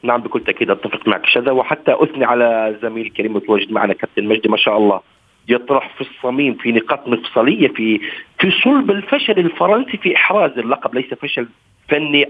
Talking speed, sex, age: 170 wpm, male, 40-59